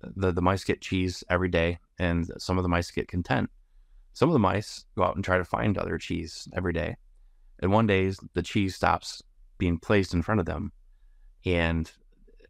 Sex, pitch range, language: male, 85-100 Hz, English